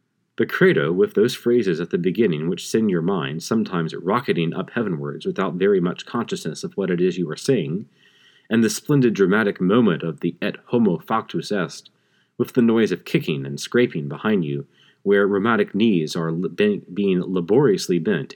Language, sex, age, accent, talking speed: English, male, 30-49, American, 175 wpm